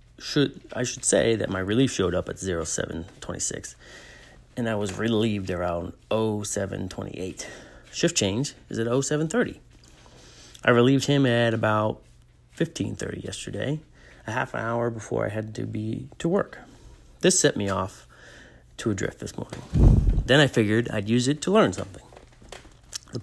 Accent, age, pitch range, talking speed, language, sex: American, 30-49, 100-125 Hz, 150 wpm, English, male